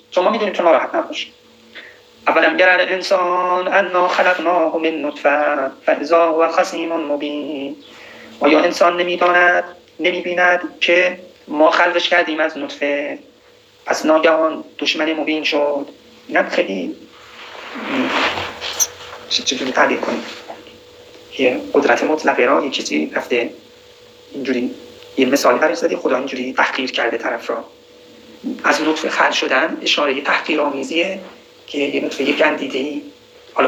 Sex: male